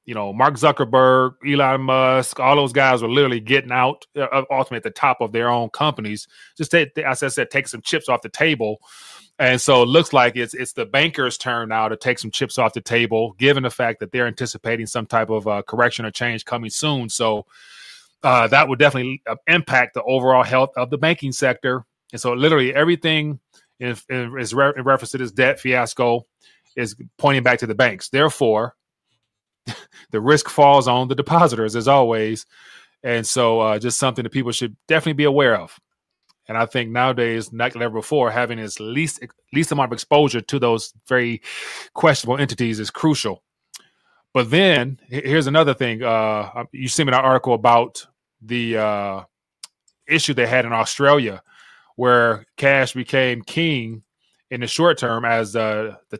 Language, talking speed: English, 180 wpm